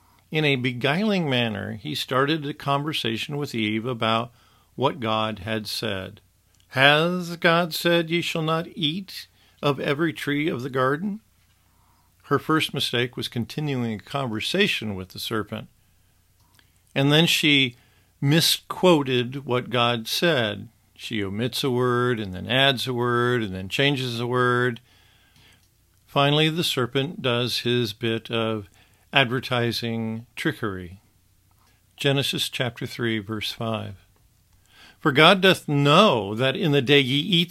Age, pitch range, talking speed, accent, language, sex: 50-69, 105-145 Hz, 135 wpm, American, English, male